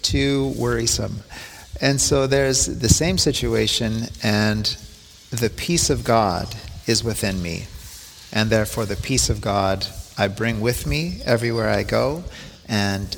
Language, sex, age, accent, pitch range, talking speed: English, male, 40-59, American, 100-115 Hz, 135 wpm